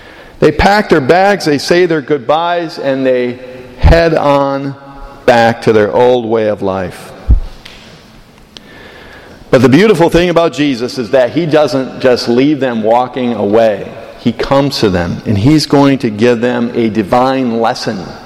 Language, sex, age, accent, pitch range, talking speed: English, male, 50-69, American, 125-170 Hz, 155 wpm